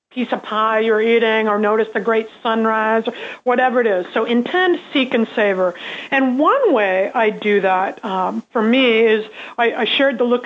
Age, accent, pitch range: 50-69, American, 225-275 Hz